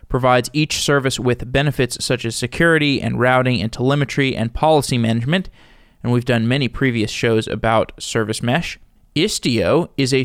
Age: 20-39